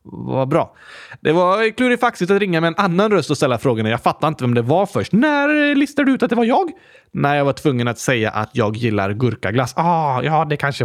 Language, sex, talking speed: Swedish, male, 245 wpm